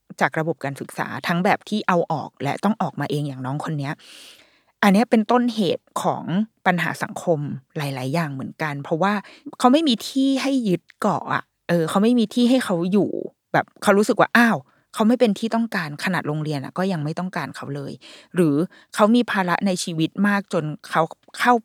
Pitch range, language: 160-215 Hz, Thai